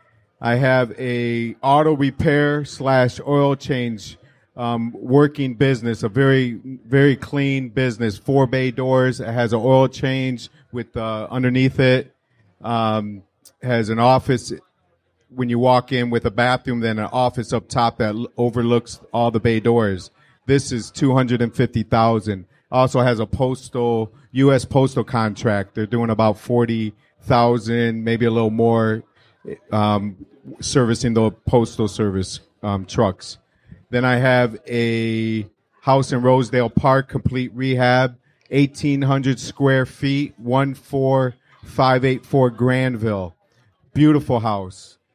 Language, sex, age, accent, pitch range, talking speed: English, male, 40-59, American, 115-130 Hz, 130 wpm